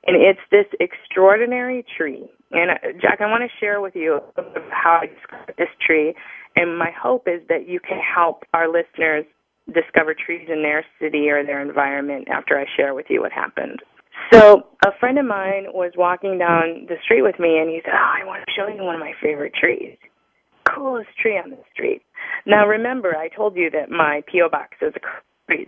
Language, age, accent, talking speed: English, 20-39, American, 200 wpm